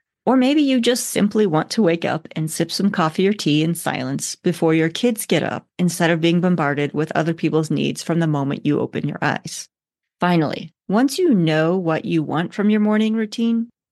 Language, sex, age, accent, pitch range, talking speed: English, female, 30-49, American, 160-210 Hz, 205 wpm